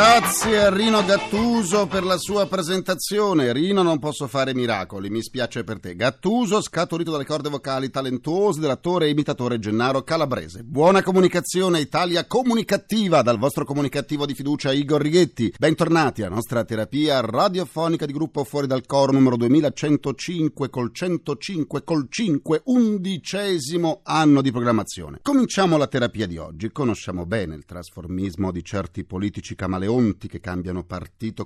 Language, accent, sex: Italian, native, male